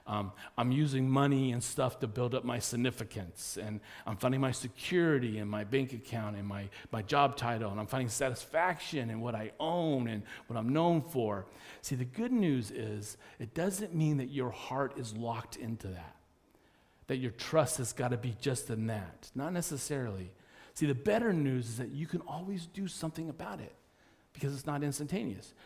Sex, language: male, English